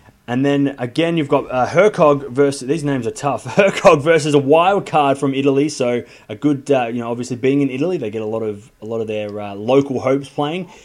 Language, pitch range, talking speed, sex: English, 130-165 Hz, 230 wpm, male